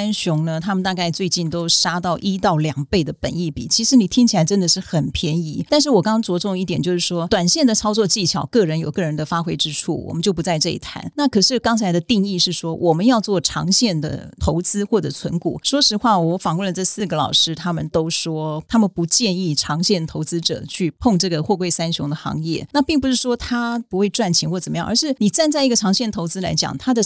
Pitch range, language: 165-220 Hz, Chinese